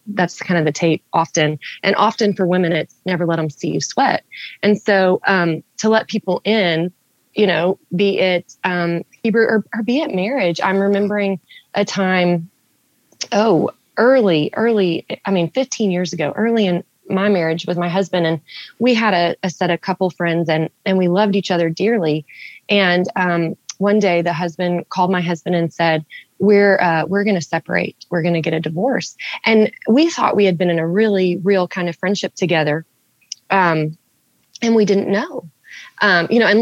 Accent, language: American, English